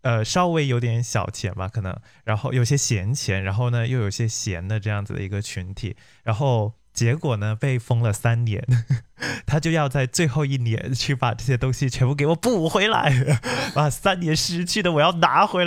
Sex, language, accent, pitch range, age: male, Chinese, native, 115-145 Hz, 20-39